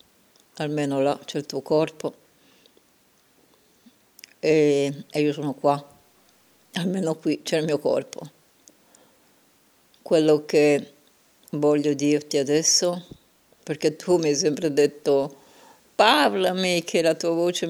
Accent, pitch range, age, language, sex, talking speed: native, 145-165 Hz, 70-89, Italian, female, 110 wpm